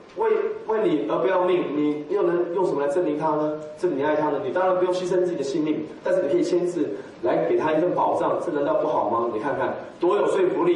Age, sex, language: 30-49, male, Chinese